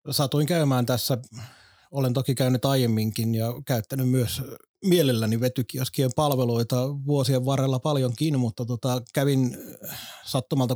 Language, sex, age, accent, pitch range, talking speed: Finnish, male, 30-49, native, 125-140 Hz, 110 wpm